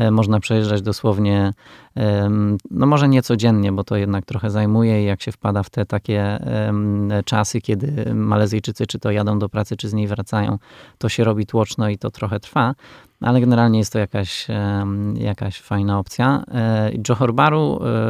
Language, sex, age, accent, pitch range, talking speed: Polish, male, 20-39, native, 105-120 Hz, 160 wpm